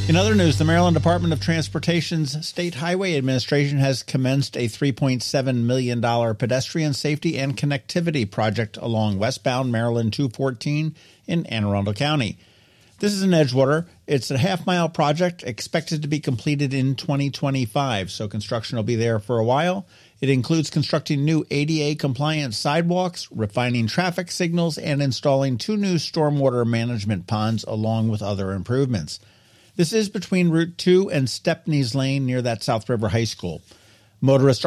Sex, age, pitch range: male, 50-69, 110-155 Hz